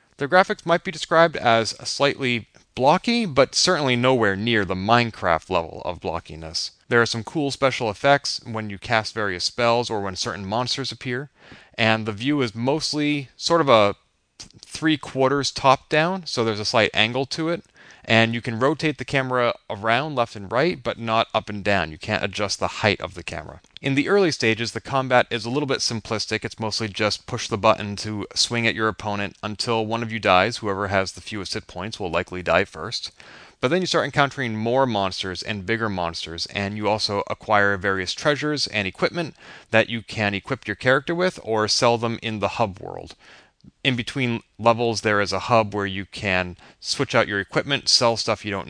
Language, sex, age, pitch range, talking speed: English, male, 30-49, 100-125 Hz, 200 wpm